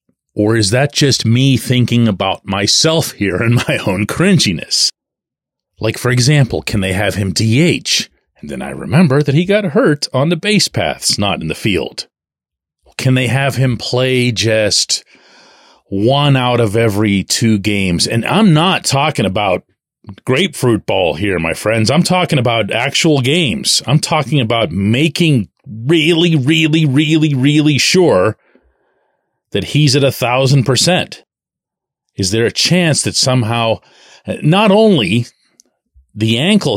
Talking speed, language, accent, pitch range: 145 wpm, English, American, 110-150 Hz